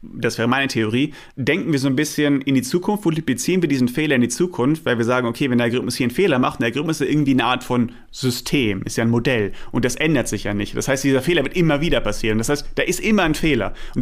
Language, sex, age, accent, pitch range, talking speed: German, male, 30-49, German, 115-145 Hz, 285 wpm